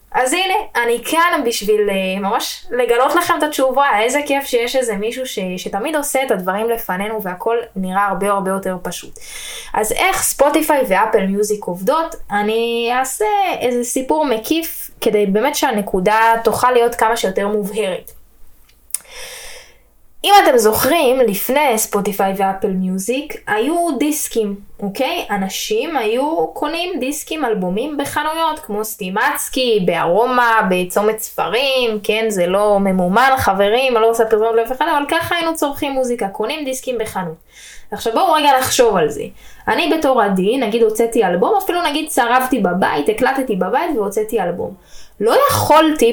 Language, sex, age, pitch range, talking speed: Hebrew, female, 10-29, 210-305 Hz, 140 wpm